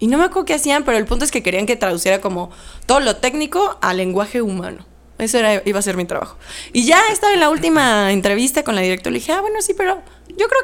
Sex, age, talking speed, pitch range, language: female, 20-39, 260 wpm, 195-260 Hz, Spanish